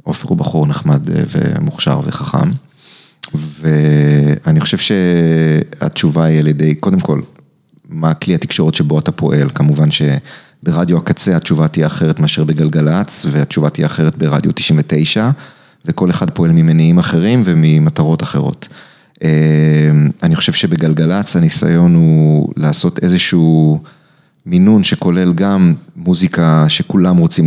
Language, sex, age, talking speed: Hebrew, male, 30-49, 115 wpm